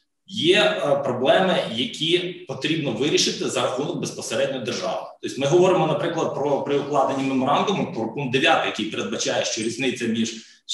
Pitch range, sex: 120-135 Hz, male